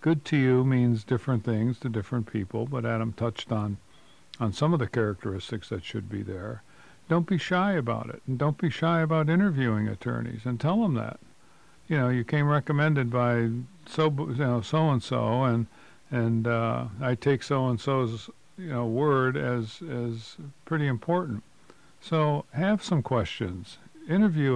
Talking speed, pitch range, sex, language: 170 wpm, 115-145 Hz, male, English